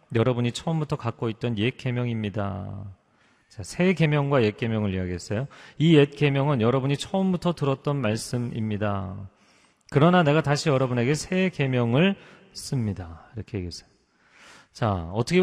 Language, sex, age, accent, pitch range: Korean, male, 40-59, native, 110-150 Hz